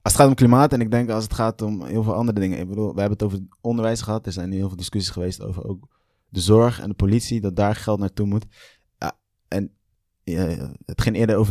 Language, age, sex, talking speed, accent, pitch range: Dutch, 20-39, male, 255 wpm, Dutch, 95-110 Hz